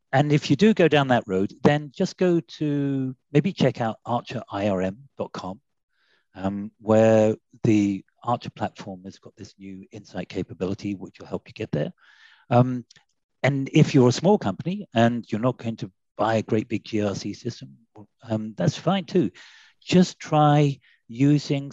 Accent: British